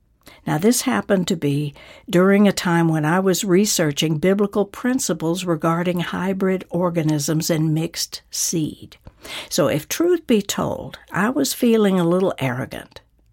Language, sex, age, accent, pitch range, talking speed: English, female, 60-79, American, 145-200 Hz, 140 wpm